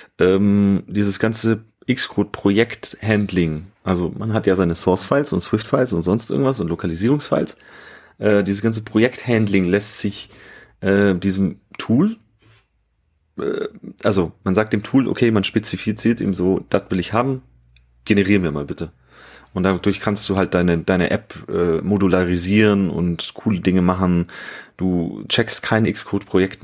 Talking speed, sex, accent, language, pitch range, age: 140 wpm, male, German, German, 90-110 Hz, 30-49